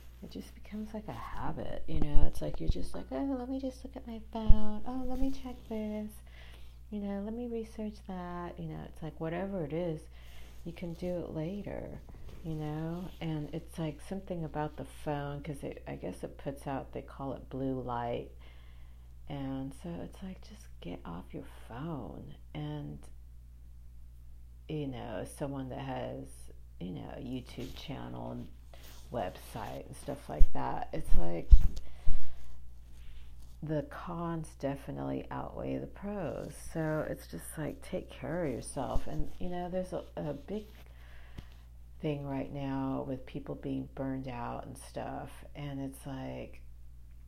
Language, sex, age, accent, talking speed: English, female, 50-69, American, 160 wpm